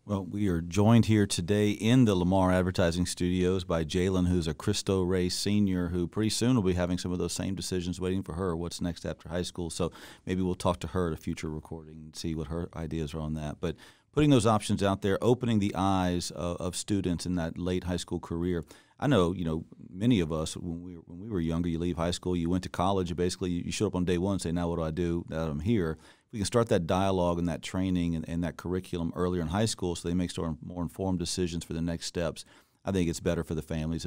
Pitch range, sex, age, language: 85-95 Hz, male, 40-59, English